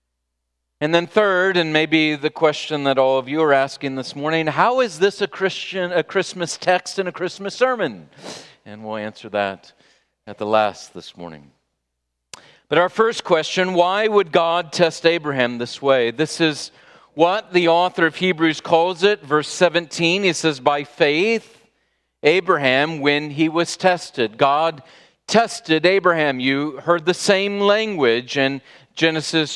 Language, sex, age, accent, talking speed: English, male, 40-59, American, 155 wpm